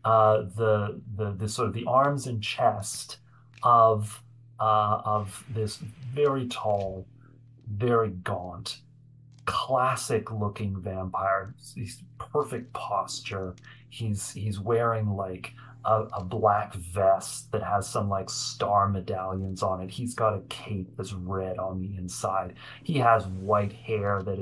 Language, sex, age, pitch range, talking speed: English, male, 30-49, 100-125 Hz, 135 wpm